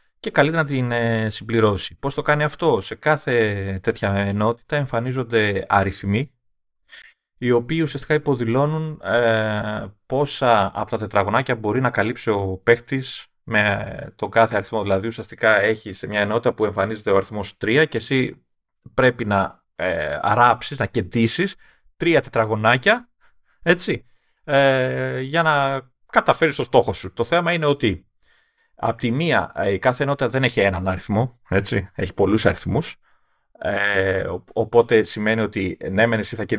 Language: Greek